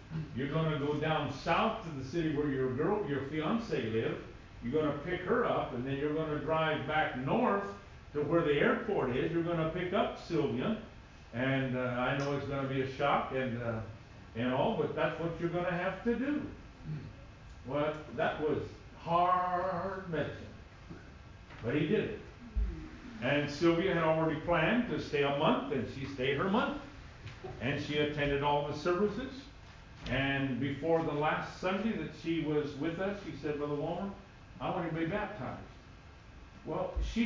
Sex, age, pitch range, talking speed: male, 50-69, 125-175 Hz, 180 wpm